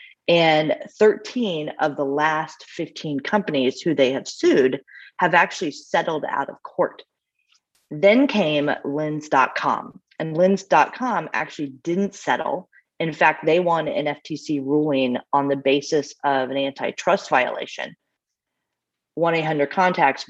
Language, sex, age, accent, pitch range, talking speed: English, female, 30-49, American, 135-165 Hz, 120 wpm